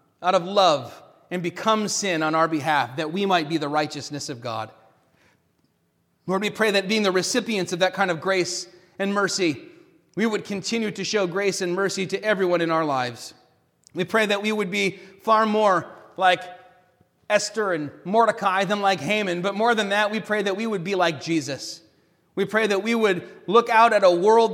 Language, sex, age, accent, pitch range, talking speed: English, male, 30-49, American, 180-215 Hz, 200 wpm